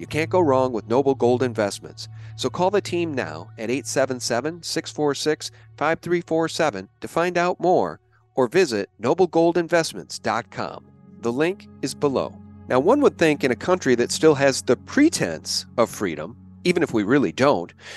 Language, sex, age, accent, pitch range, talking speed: English, male, 50-69, American, 120-170 Hz, 150 wpm